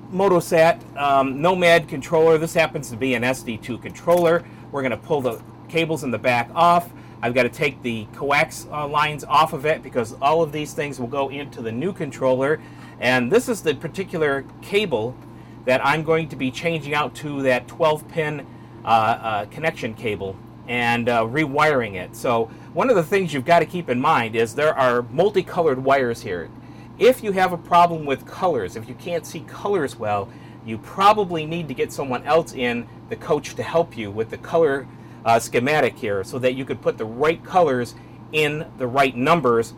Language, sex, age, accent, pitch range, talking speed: English, male, 40-59, American, 125-165 Hz, 195 wpm